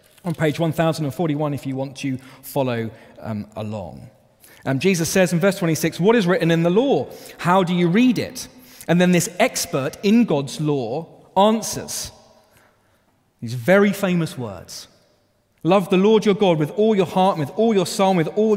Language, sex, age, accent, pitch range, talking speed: English, male, 30-49, British, 115-170 Hz, 175 wpm